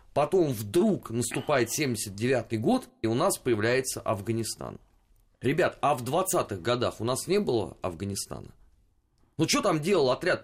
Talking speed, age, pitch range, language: 145 wpm, 30-49, 110-155 Hz, Russian